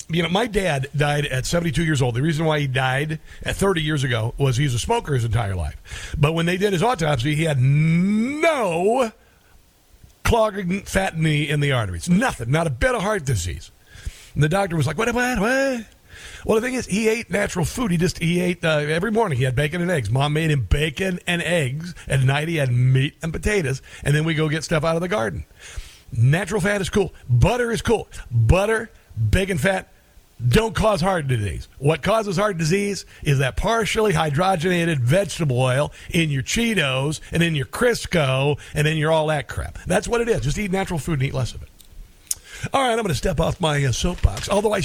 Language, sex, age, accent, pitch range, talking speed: English, male, 50-69, American, 130-190 Hz, 215 wpm